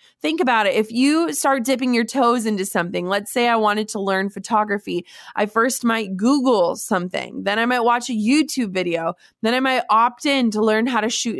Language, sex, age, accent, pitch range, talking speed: English, female, 20-39, American, 210-270 Hz, 210 wpm